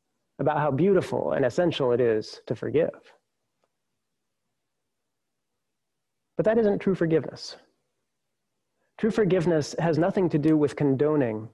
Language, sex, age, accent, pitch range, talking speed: English, male, 30-49, American, 140-180 Hz, 115 wpm